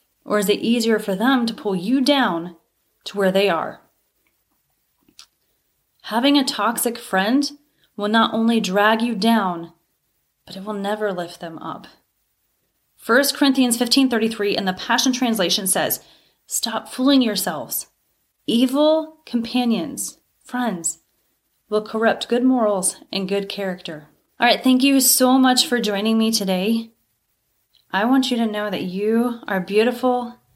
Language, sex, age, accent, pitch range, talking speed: English, female, 30-49, American, 185-250 Hz, 140 wpm